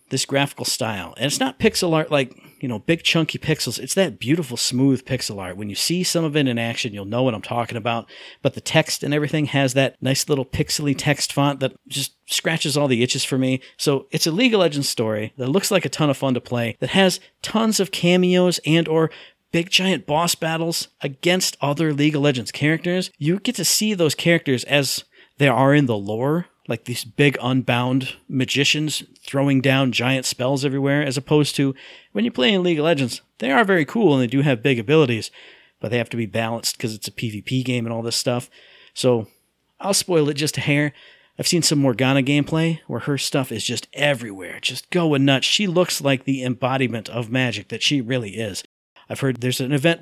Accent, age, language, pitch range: American, 50-69, English, 125-155 Hz